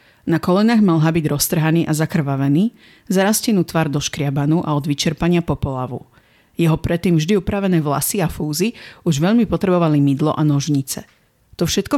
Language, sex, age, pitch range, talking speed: Slovak, female, 40-59, 145-175 Hz, 150 wpm